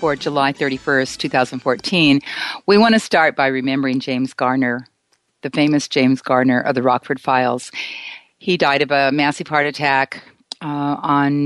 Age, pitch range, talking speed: 50-69, 135-170 Hz, 150 wpm